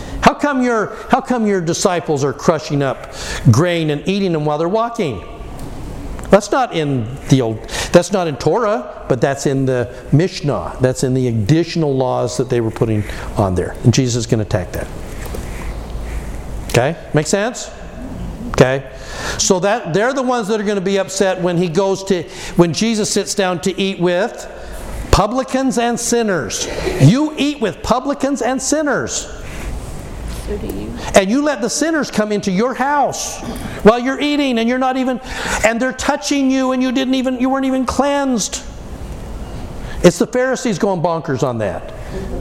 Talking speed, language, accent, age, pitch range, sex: 165 wpm, English, American, 60-79, 155-245 Hz, male